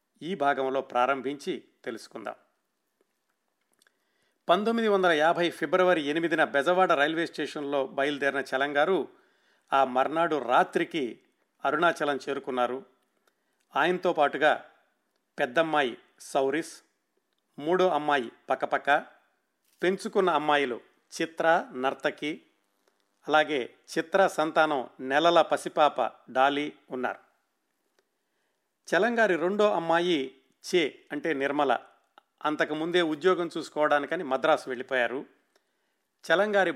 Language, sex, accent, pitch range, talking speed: Telugu, male, native, 140-175 Hz, 80 wpm